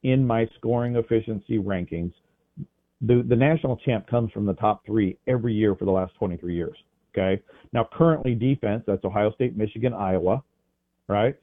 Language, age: English, 40-59